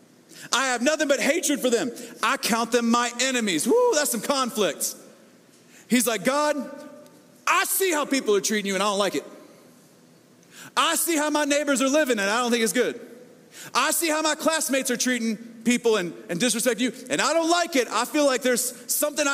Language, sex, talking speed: English, male, 205 wpm